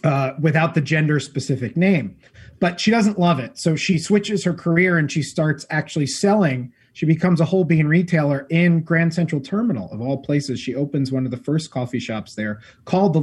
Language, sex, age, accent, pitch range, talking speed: English, male, 30-49, American, 130-170 Hz, 205 wpm